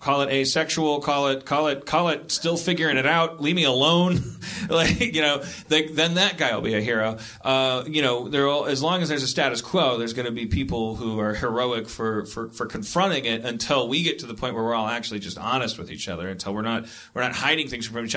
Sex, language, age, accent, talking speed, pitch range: male, English, 30-49, American, 250 wpm, 115-150 Hz